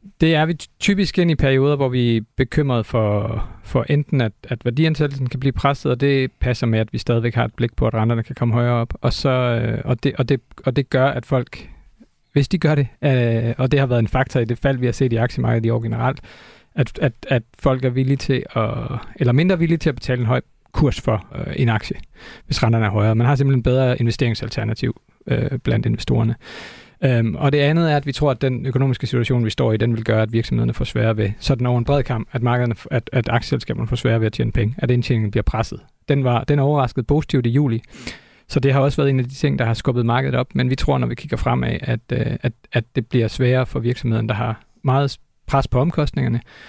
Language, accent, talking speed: Danish, native, 235 wpm